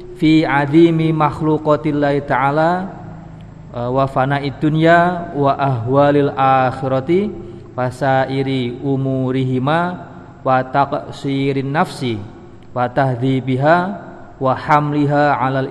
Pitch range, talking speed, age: 125-150 Hz, 85 wpm, 40-59